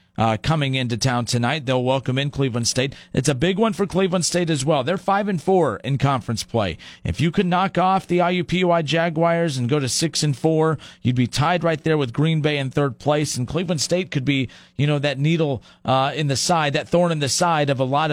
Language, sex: English, male